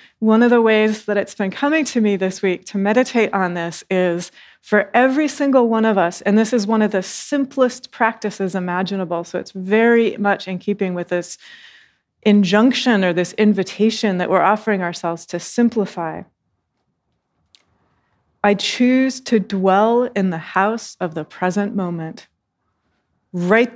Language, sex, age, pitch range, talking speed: English, female, 30-49, 180-225 Hz, 155 wpm